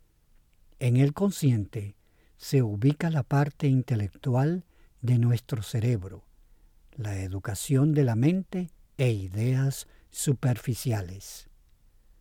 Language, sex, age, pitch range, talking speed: Spanish, male, 50-69, 100-140 Hz, 95 wpm